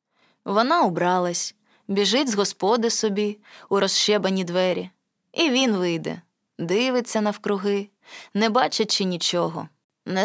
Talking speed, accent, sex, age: 105 wpm, native, female, 20-39